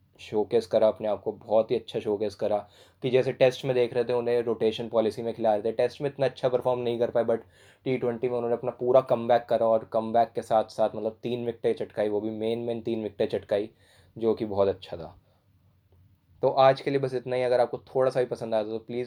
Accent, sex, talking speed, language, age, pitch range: Indian, male, 175 wpm, English, 20-39, 100-120 Hz